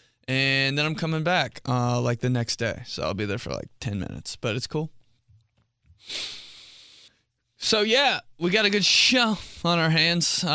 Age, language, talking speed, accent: 20-39, English, 175 wpm, American